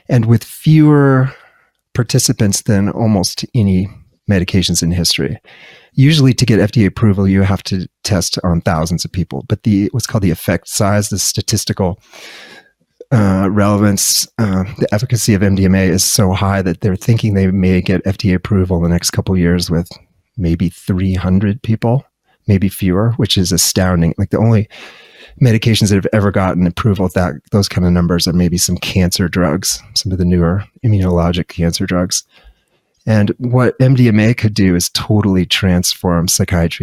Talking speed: 165 wpm